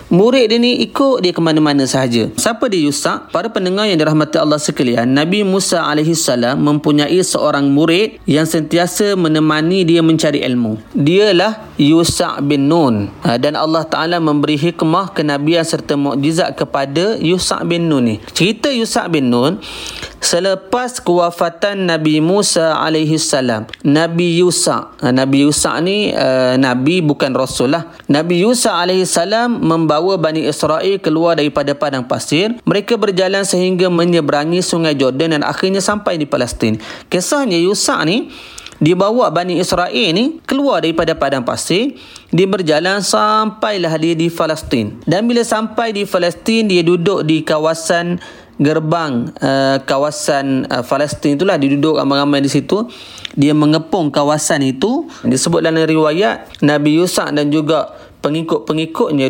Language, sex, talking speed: Malay, male, 140 wpm